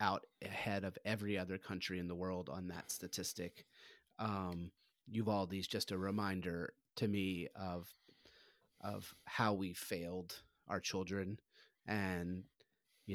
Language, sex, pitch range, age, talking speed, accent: English, male, 90-110 Hz, 30-49, 130 wpm, American